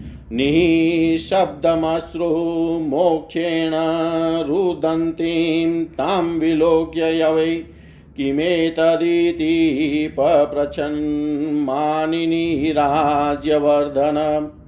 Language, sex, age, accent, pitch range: Hindi, male, 50-69, native, 150-165 Hz